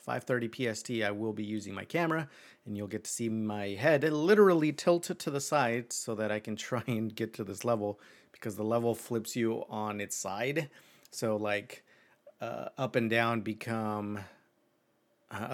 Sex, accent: male, American